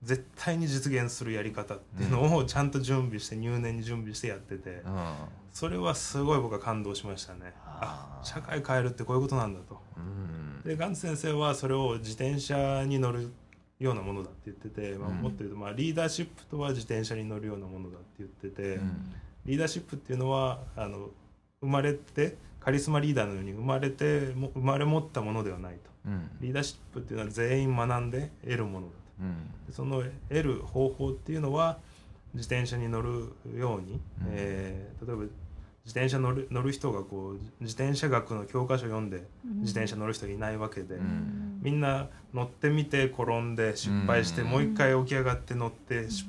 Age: 20-39